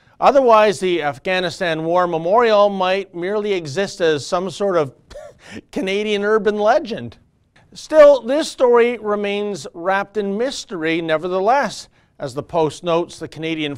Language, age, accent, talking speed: English, 40-59, American, 125 wpm